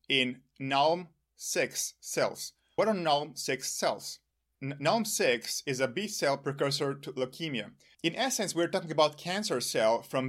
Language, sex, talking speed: English, male, 135 wpm